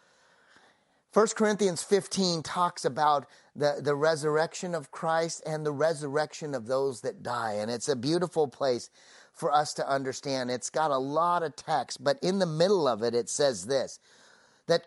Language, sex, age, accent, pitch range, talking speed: English, male, 30-49, American, 135-180 Hz, 170 wpm